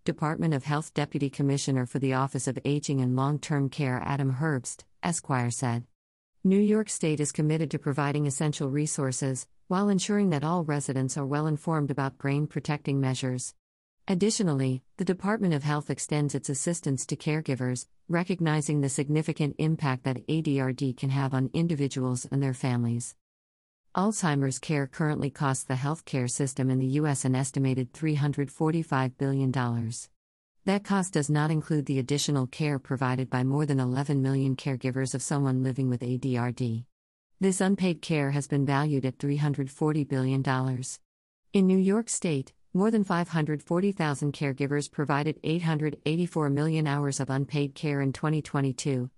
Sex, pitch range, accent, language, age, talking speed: female, 130-155 Hz, American, English, 50-69, 145 wpm